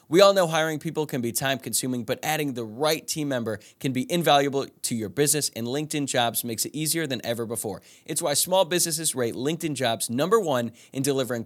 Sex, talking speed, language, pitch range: male, 210 wpm, English, 110-145 Hz